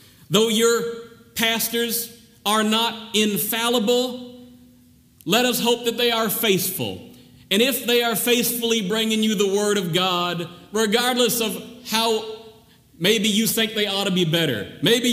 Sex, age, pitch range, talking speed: male, 40-59, 165-220 Hz, 145 wpm